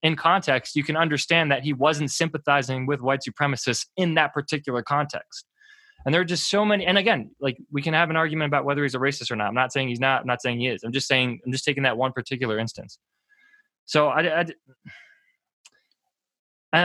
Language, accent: English, American